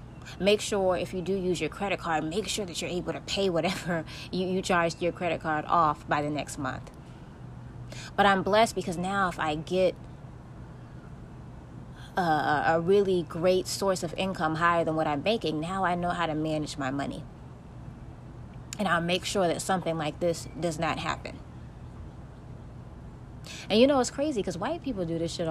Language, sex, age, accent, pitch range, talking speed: English, female, 20-39, American, 155-190 Hz, 185 wpm